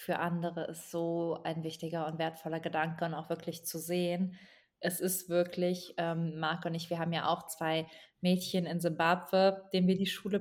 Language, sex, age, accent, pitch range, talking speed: German, female, 20-39, German, 170-200 Hz, 190 wpm